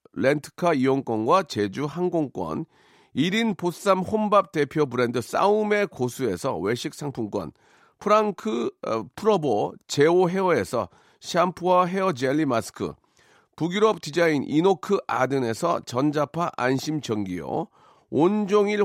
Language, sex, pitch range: Korean, male, 145-200 Hz